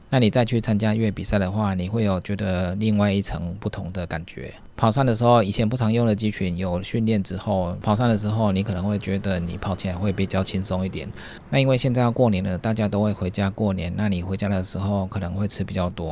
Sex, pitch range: male, 95-110 Hz